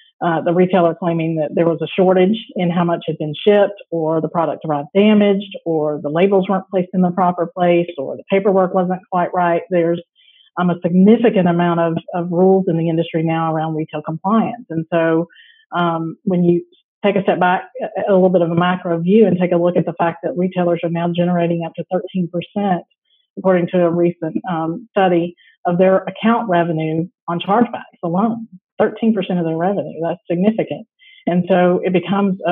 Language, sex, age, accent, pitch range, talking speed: English, female, 40-59, American, 165-190 Hz, 190 wpm